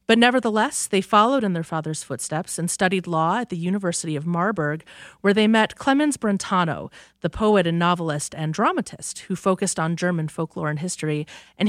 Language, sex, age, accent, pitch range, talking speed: English, female, 30-49, American, 165-210 Hz, 180 wpm